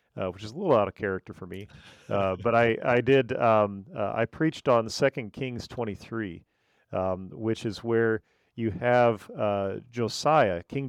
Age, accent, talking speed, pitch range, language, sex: 40-59, American, 175 wpm, 100-130 Hz, English, male